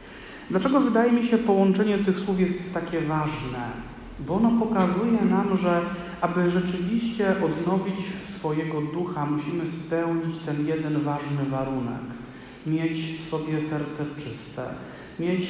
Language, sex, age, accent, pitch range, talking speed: Polish, male, 40-59, native, 145-180 Hz, 125 wpm